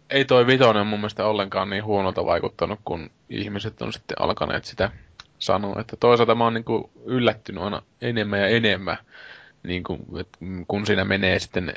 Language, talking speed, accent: Finnish, 175 wpm, native